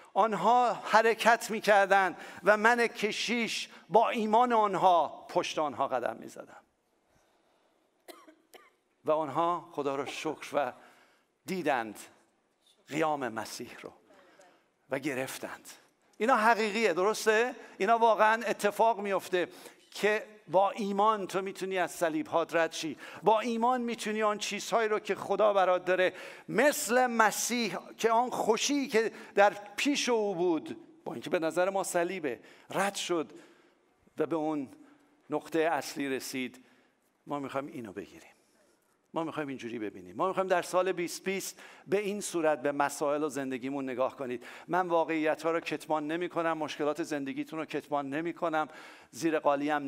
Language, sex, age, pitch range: English, male, 50-69, 160-220 Hz